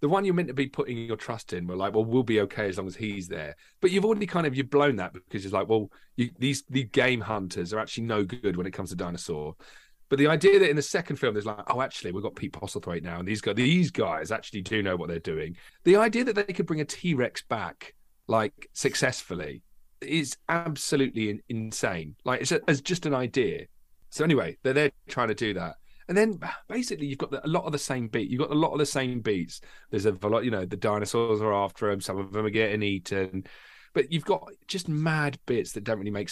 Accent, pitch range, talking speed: British, 105-150 Hz, 245 wpm